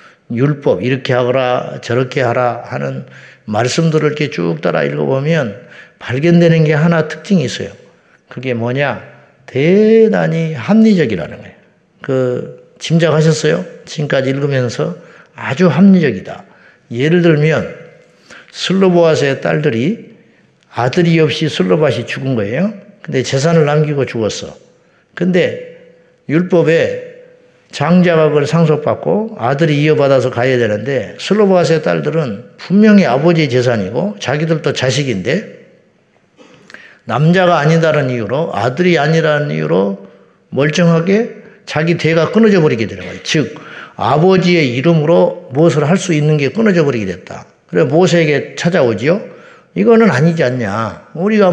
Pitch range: 130-170 Hz